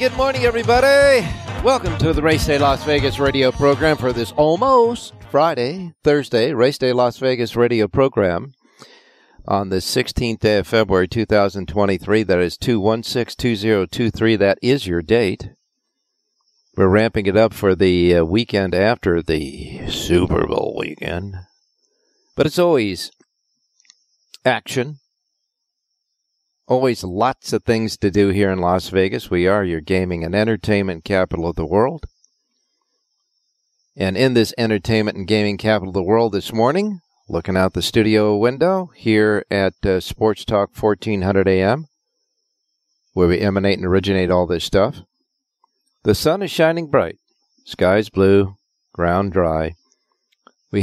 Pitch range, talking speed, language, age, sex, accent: 95-135 Hz, 135 wpm, English, 50-69, male, American